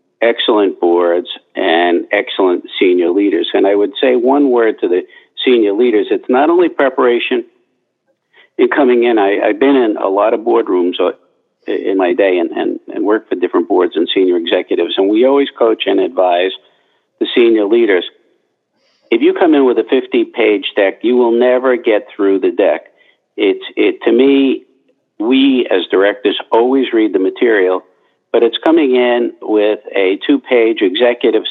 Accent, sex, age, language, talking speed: American, male, 50-69, English, 165 wpm